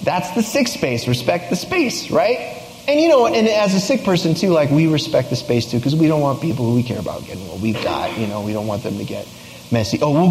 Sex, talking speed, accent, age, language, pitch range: male, 275 wpm, American, 30-49, English, 100-140 Hz